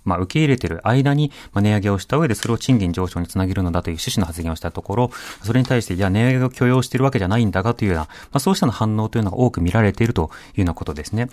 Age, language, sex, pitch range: 30-49, Japanese, male, 95-145 Hz